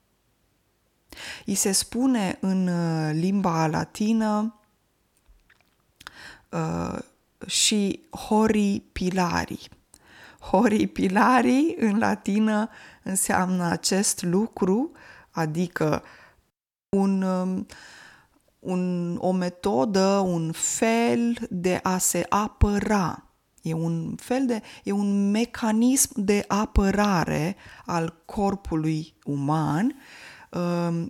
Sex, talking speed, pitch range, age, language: female, 80 wpm, 185-230 Hz, 20-39, Romanian